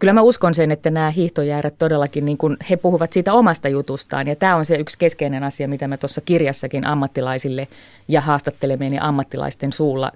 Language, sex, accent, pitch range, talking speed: Finnish, female, native, 135-175 Hz, 185 wpm